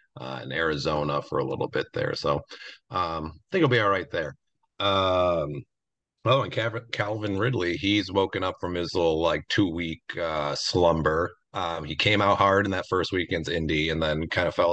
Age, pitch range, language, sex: 40-59, 80-110 Hz, English, male